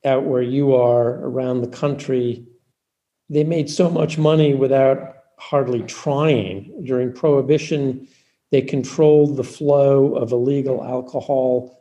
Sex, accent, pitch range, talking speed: male, American, 125-150 Hz, 120 wpm